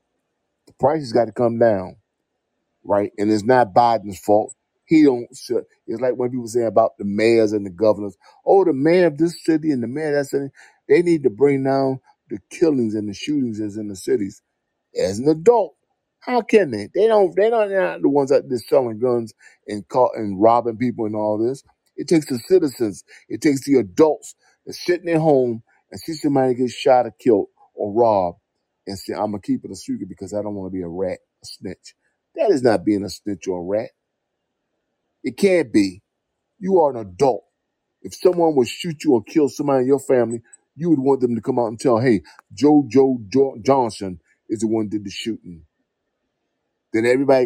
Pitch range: 110-165 Hz